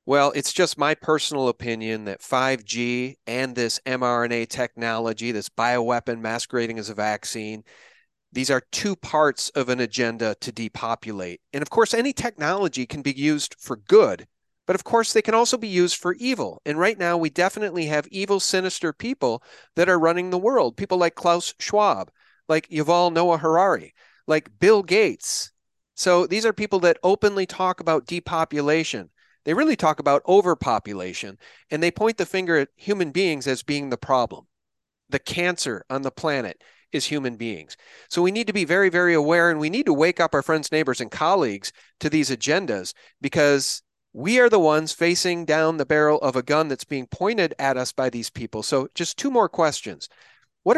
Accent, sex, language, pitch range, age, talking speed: American, male, English, 130-180 Hz, 40-59, 180 wpm